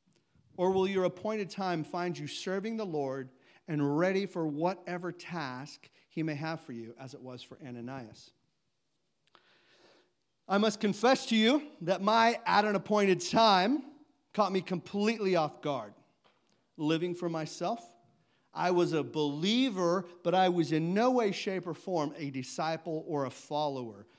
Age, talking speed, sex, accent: 40-59, 155 wpm, male, American